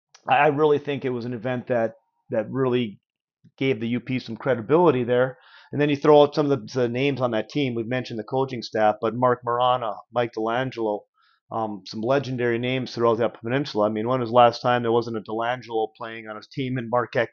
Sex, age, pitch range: male, 30-49, 115-135 Hz